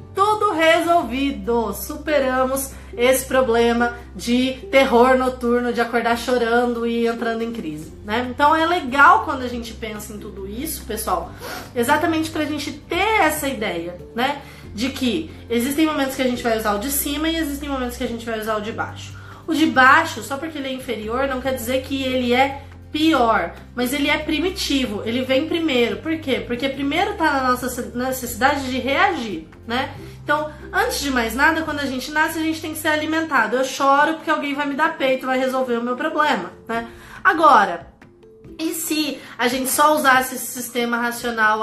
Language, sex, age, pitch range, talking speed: Portuguese, female, 20-39, 235-300 Hz, 185 wpm